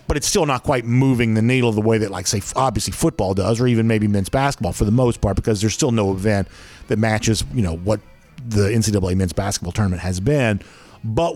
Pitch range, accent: 105-130 Hz, American